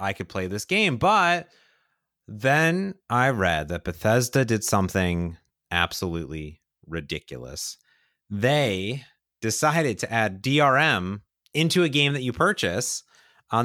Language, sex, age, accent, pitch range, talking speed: English, male, 30-49, American, 105-155 Hz, 120 wpm